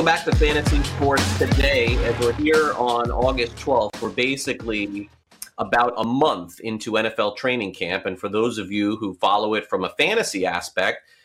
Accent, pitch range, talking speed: American, 105-135 Hz, 170 wpm